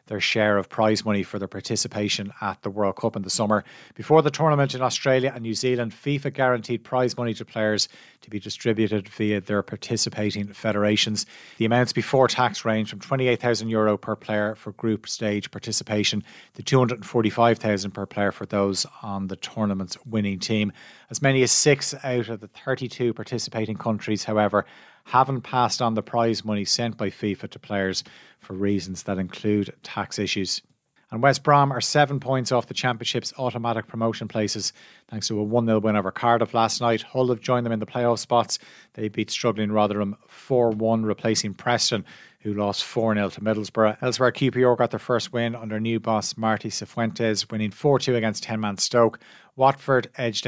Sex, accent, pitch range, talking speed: male, Irish, 105-125 Hz, 175 wpm